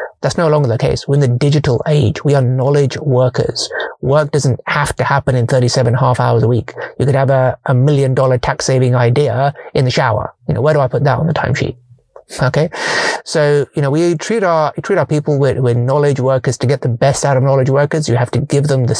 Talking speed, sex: 245 wpm, male